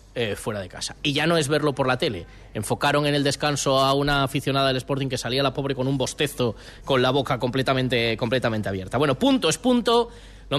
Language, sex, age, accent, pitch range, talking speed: Spanish, male, 20-39, Spanish, 125-175 Hz, 220 wpm